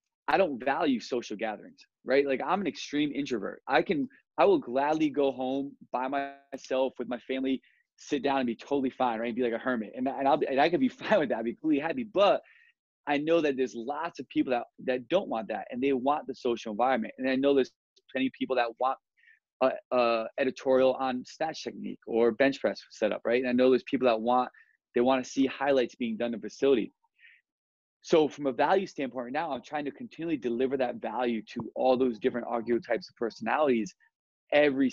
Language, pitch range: English, 120-150 Hz